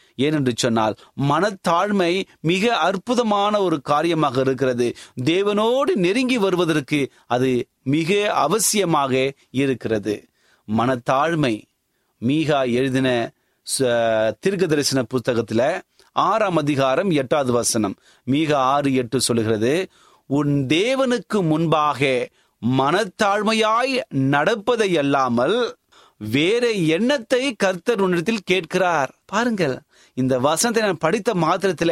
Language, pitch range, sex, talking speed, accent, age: Tamil, 130-190 Hz, male, 85 wpm, native, 30-49